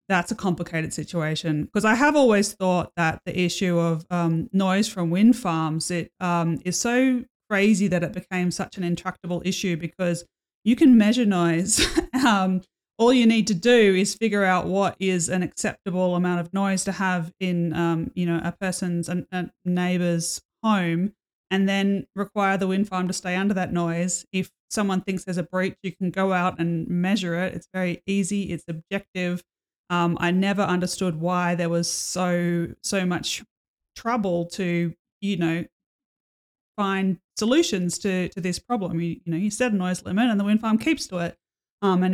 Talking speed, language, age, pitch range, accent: 185 wpm, English, 20-39, 175-195 Hz, Australian